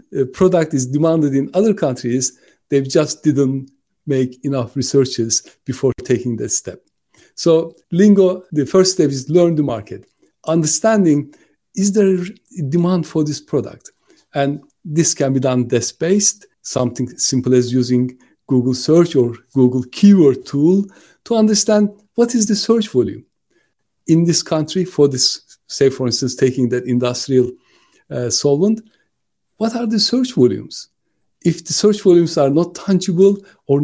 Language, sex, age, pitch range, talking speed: English, male, 50-69, 130-190 Hz, 145 wpm